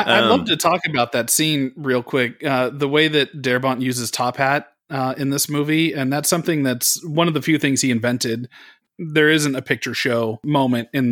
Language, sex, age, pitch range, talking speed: English, male, 30-49, 125-150 Hz, 210 wpm